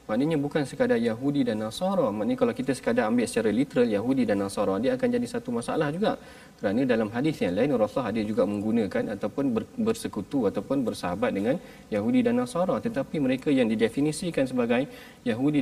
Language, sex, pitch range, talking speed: Malayalam, male, 160-255 Hz, 175 wpm